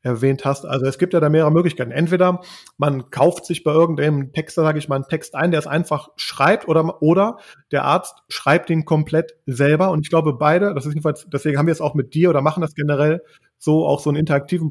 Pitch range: 150-180 Hz